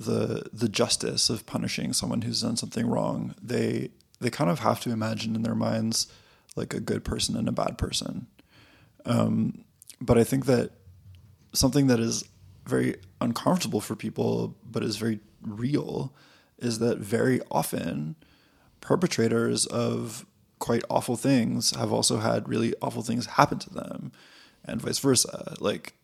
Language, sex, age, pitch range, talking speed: English, male, 20-39, 110-120 Hz, 150 wpm